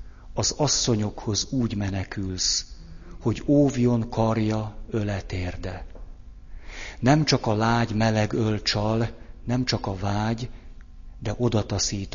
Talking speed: 100 wpm